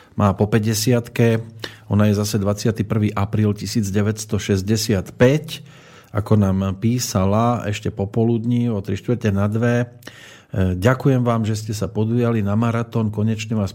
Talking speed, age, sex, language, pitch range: 120 wpm, 40-59, male, Slovak, 100-120 Hz